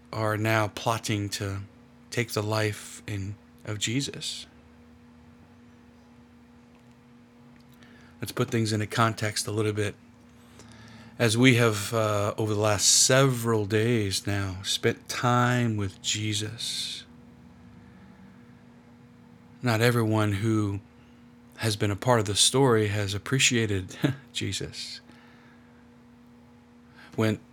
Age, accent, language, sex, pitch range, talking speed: 40-59, American, English, male, 105-120 Hz, 100 wpm